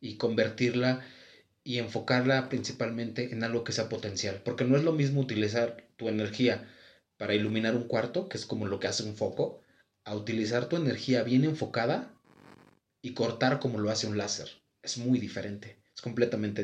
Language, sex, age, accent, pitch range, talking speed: Spanish, male, 30-49, Mexican, 105-130 Hz, 175 wpm